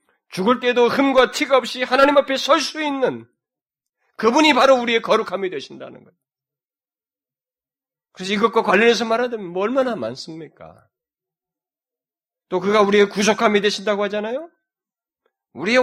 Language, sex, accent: Korean, male, native